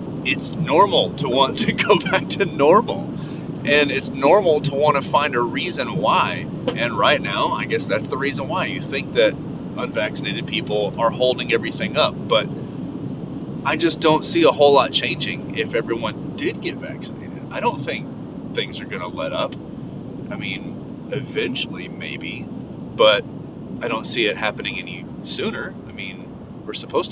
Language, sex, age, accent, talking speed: English, male, 30-49, American, 165 wpm